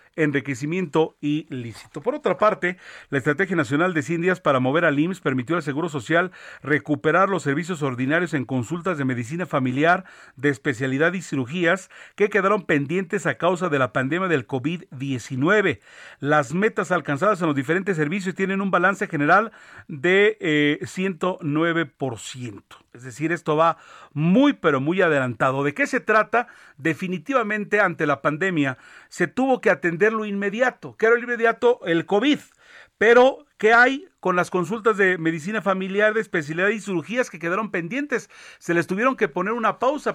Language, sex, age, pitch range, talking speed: Spanish, male, 40-59, 155-205 Hz, 160 wpm